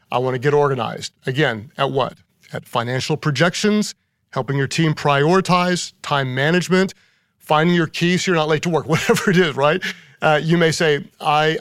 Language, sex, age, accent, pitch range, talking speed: English, male, 40-59, American, 125-150 Hz, 180 wpm